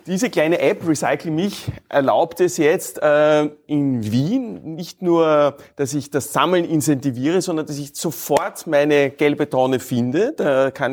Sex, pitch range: male, 120-155 Hz